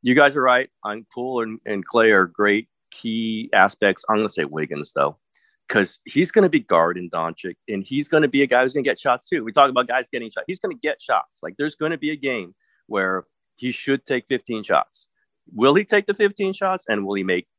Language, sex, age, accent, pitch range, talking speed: English, male, 30-49, American, 100-155 Hz, 250 wpm